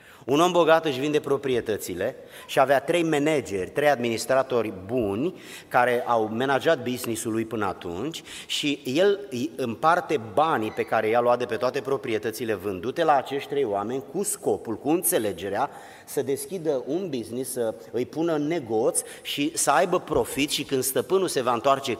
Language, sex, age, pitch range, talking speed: Romanian, male, 30-49, 125-175 Hz, 165 wpm